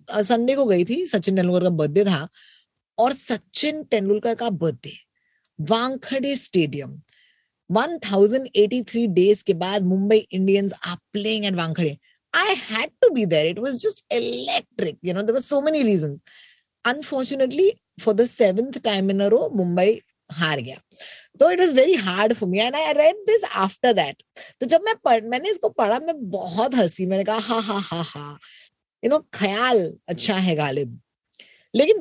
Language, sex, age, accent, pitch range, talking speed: Hindi, female, 20-39, native, 190-310 Hz, 90 wpm